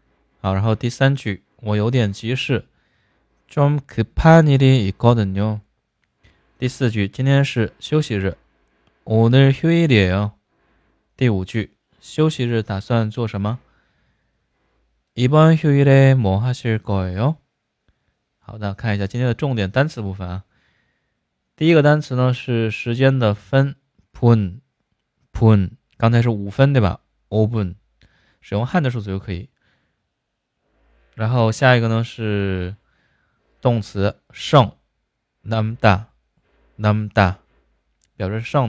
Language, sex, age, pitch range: Chinese, male, 20-39, 95-125 Hz